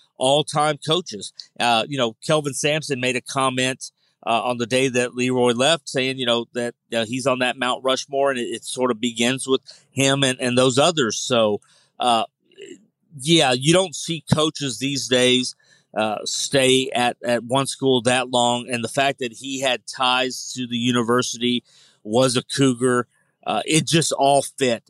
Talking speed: 175 wpm